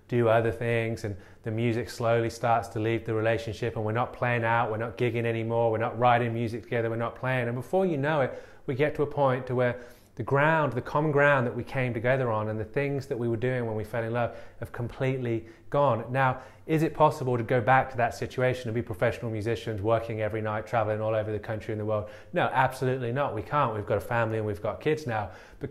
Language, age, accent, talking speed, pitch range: English, 20-39, British, 245 wpm, 110-130 Hz